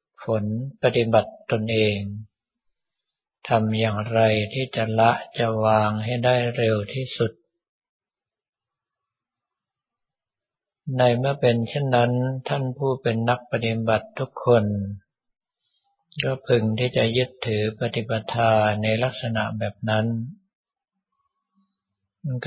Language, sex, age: Thai, male, 60-79